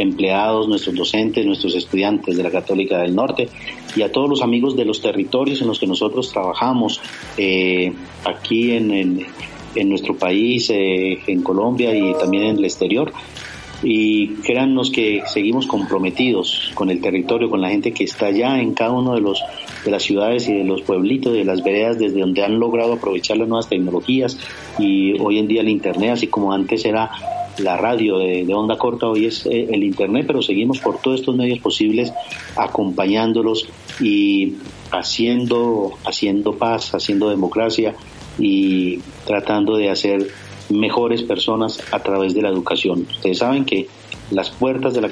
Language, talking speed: Spanish, 165 wpm